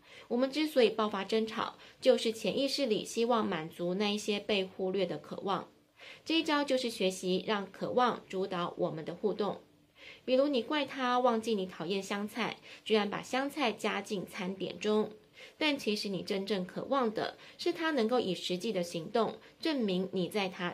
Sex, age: female, 20-39